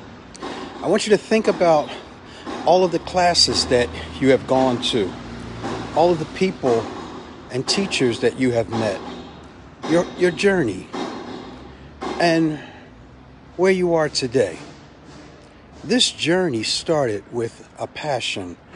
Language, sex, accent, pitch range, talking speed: English, male, American, 115-170 Hz, 125 wpm